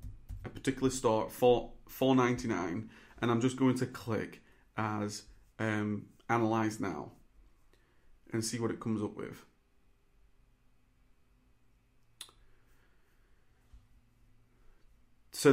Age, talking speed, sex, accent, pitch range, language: 30-49, 85 wpm, male, British, 120-155 Hz, English